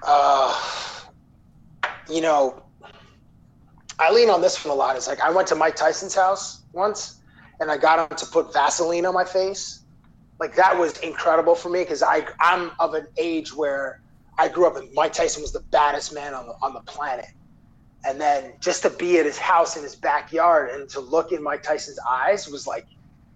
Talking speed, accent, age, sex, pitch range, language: 200 wpm, American, 30-49, male, 145-185 Hz, English